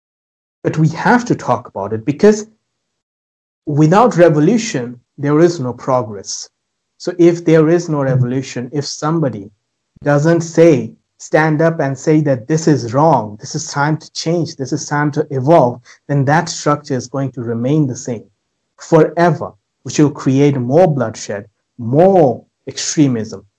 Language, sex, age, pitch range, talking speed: English, male, 60-79, 130-170 Hz, 150 wpm